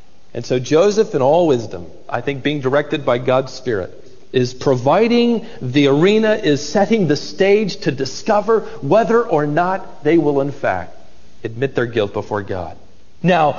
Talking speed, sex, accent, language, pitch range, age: 160 wpm, male, American, English, 150-240 Hz, 40-59